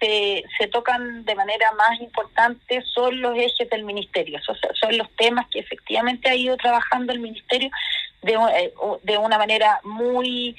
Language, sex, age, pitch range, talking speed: Spanish, female, 30-49, 210-255 Hz, 140 wpm